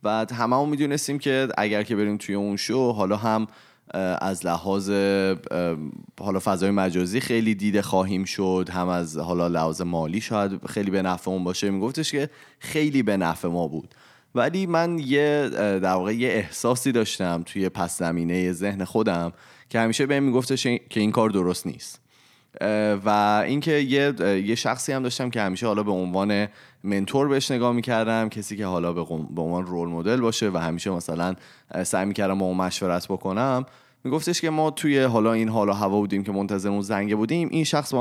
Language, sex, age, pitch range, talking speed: Persian, male, 30-49, 95-120 Hz, 175 wpm